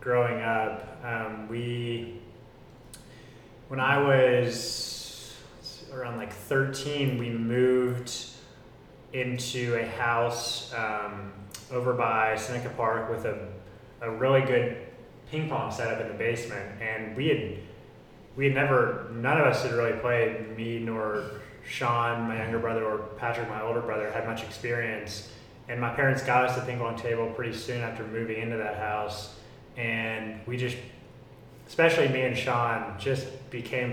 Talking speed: 145 wpm